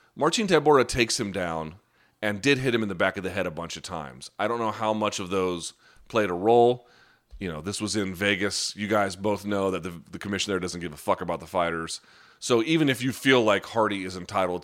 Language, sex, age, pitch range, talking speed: English, male, 30-49, 90-120 Hz, 245 wpm